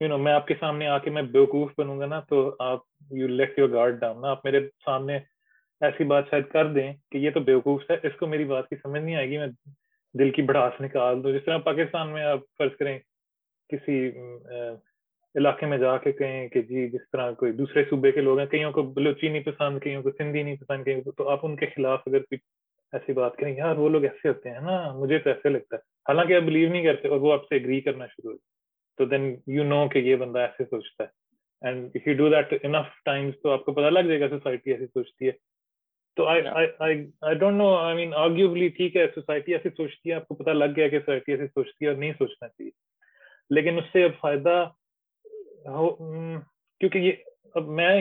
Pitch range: 140-170 Hz